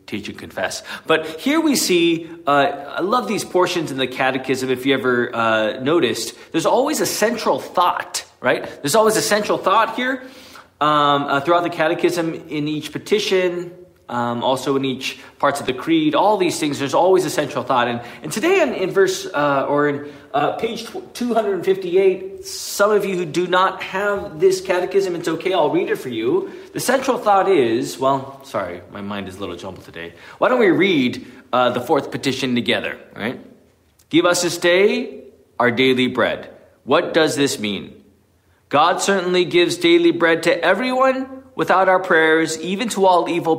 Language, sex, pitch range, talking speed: English, male, 145-225 Hz, 180 wpm